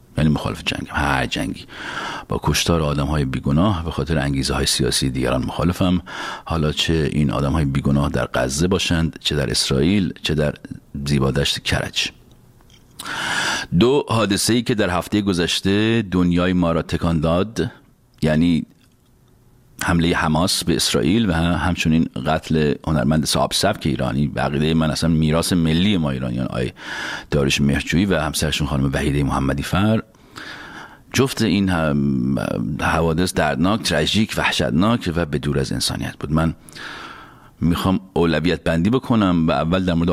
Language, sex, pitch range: Persian, male, 70-90 Hz